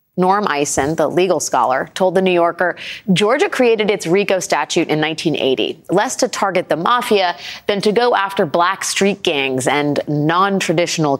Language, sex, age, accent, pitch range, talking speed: English, female, 30-49, American, 165-215 Hz, 160 wpm